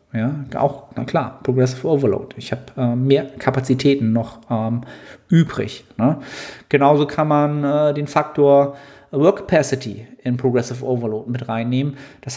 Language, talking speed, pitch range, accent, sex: German, 140 wpm, 125-150 Hz, German, male